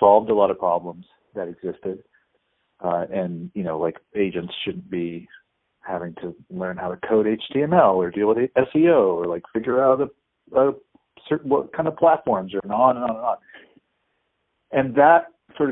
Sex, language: male, English